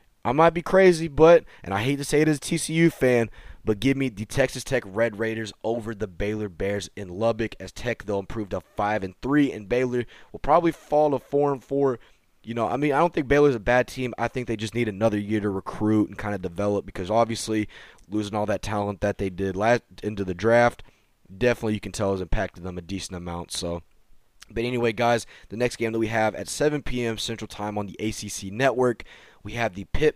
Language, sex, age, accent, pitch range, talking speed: English, male, 20-39, American, 105-125 Hz, 230 wpm